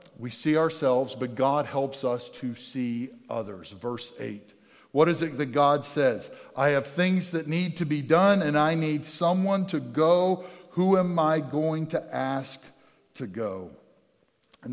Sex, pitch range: male, 120-155 Hz